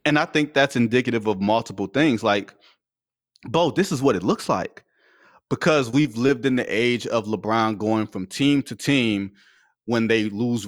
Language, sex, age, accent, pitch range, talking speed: English, male, 30-49, American, 110-150 Hz, 180 wpm